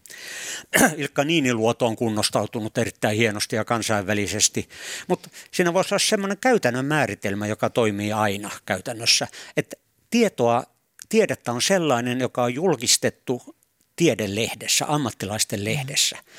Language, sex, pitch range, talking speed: Finnish, male, 115-150 Hz, 110 wpm